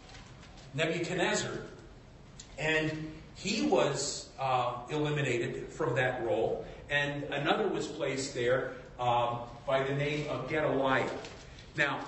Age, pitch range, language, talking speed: 40-59, 135-175 Hz, Italian, 105 wpm